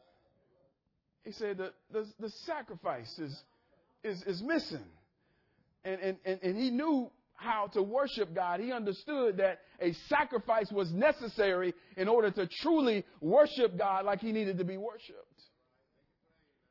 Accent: American